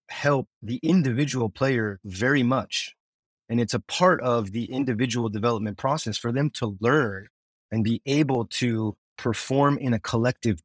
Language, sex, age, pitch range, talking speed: English, male, 30-49, 110-135 Hz, 150 wpm